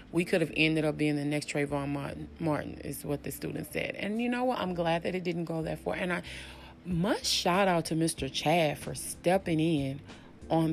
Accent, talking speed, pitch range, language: American, 220 wpm, 145-190 Hz, English